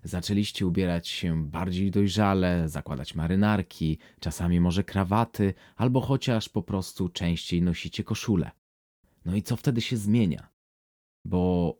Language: Polish